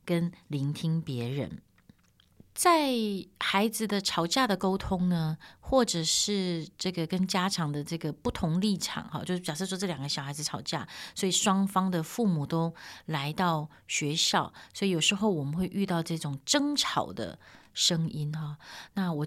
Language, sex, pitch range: Chinese, female, 155-210 Hz